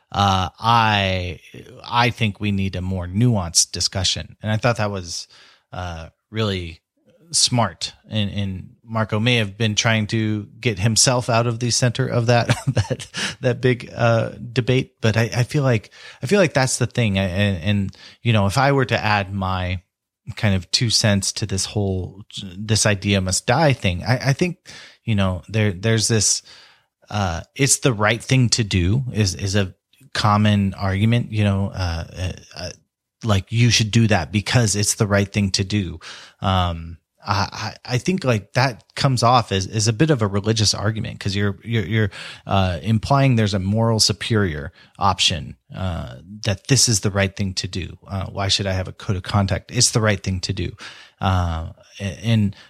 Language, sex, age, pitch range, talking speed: English, male, 30-49, 95-120 Hz, 185 wpm